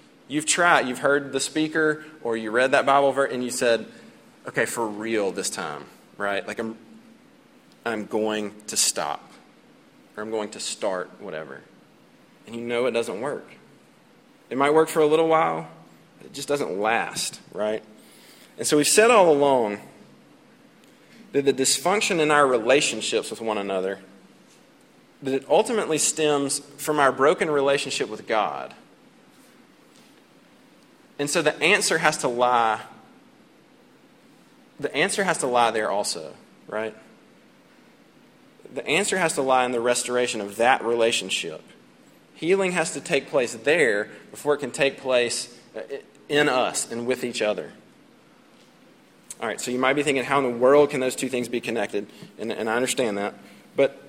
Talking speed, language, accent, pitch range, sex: 160 wpm, English, American, 115-155 Hz, male